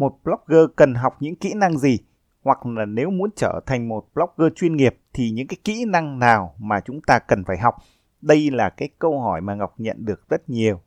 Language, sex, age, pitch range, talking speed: Vietnamese, male, 20-39, 115-160 Hz, 225 wpm